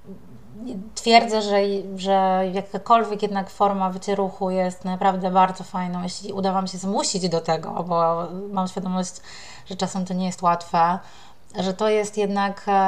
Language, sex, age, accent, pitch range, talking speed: Polish, female, 20-39, native, 180-195 Hz, 145 wpm